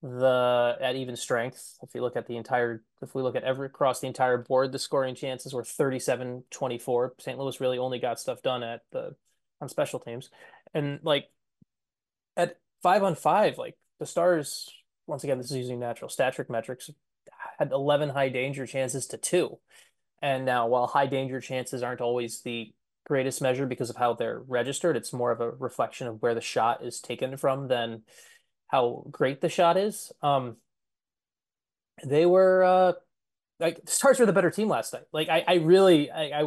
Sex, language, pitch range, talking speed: male, English, 130-155 Hz, 190 wpm